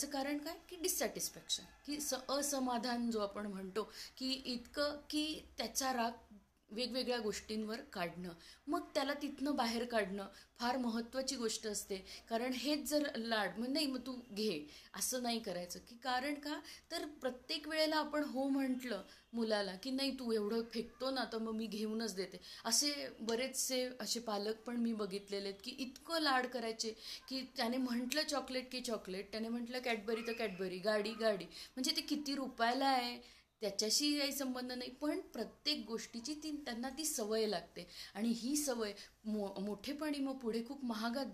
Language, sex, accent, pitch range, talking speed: Marathi, female, native, 215-265 Hz, 150 wpm